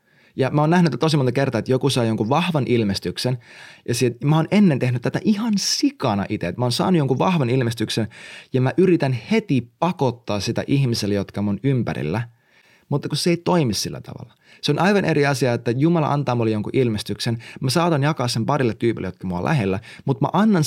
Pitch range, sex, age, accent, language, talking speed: 110-150 Hz, male, 20-39, native, Finnish, 205 wpm